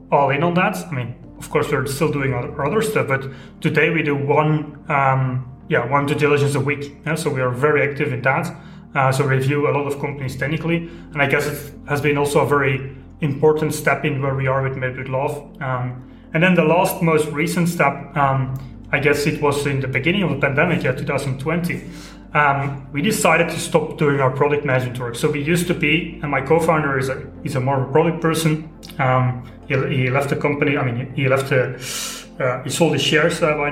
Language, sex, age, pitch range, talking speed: English, male, 30-49, 135-160 Hz, 215 wpm